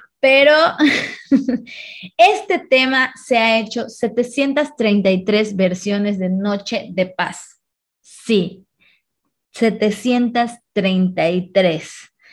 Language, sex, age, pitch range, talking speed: Spanish, female, 20-39, 195-265 Hz, 70 wpm